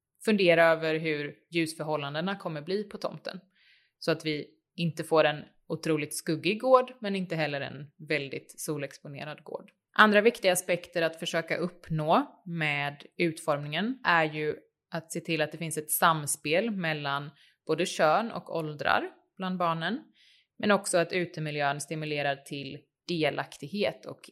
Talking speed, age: 140 wpm, 20-39